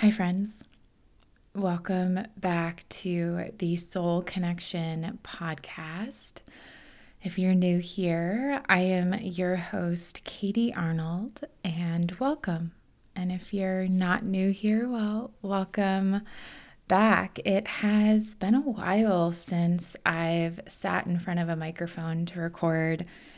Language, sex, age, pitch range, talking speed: English, female, 20-39, 165-190 Hz, 115 wpm